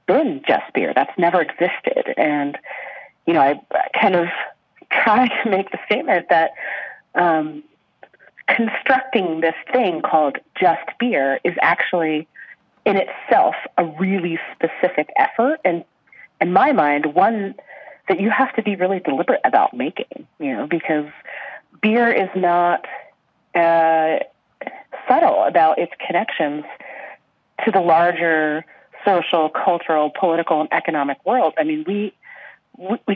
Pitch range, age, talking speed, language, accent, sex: 160-220 Hz, 30-49, 130 wpm, English, American, female